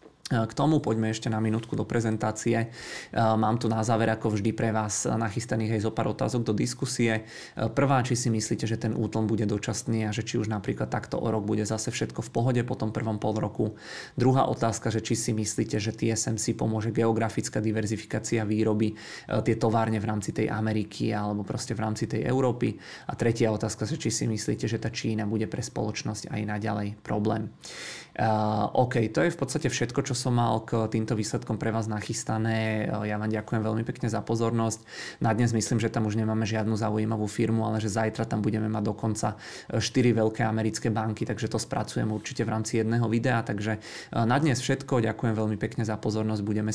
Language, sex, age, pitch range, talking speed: Czech, male, 20-39, 110-115 Hz, 195 wpm